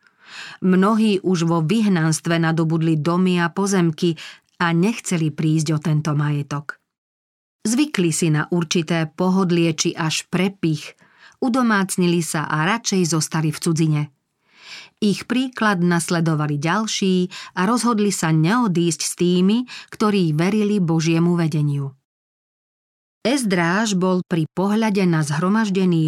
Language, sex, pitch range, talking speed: Slovak, female, 165-195 Hz, 115 wpm